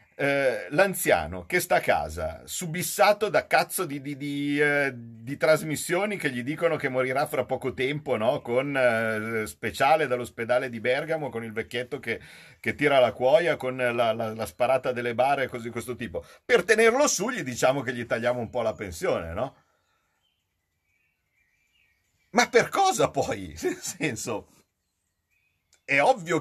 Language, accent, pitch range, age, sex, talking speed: Italian, native, 115-150 Hz, 50-69, male, 160 wpm